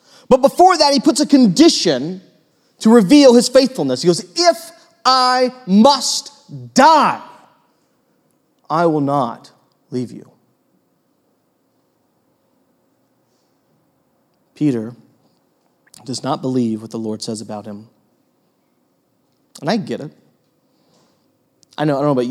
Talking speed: 110 wpm